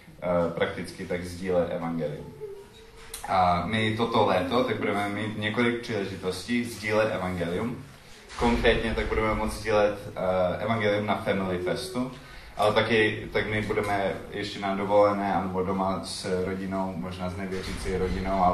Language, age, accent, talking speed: Czech, 20-39, native, 130 wpm